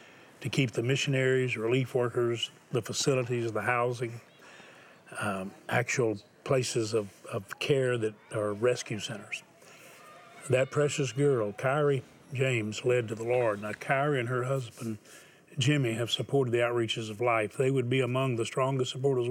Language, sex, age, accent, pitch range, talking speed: English, male, 40-59, American, 115-135 Hz, 150 wpm